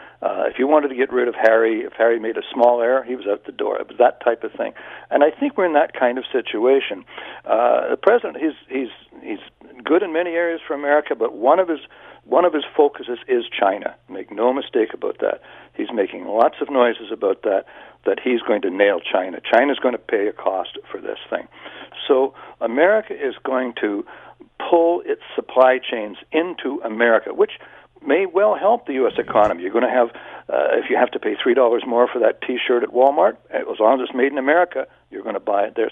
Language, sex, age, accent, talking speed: English, male, 60-79, American, 220 wpm